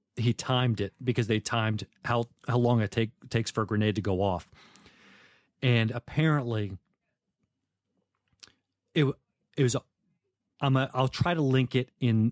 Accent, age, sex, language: American, 30-49, male, English